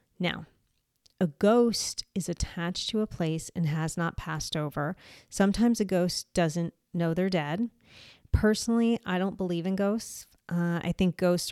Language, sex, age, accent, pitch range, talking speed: English, female, 30-49, American, 170-200 Hz, 155 wpm